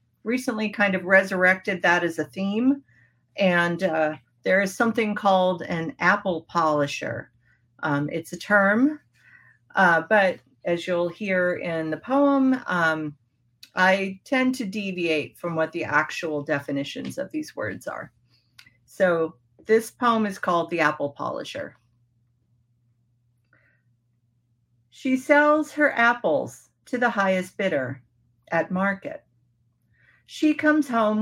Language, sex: English, female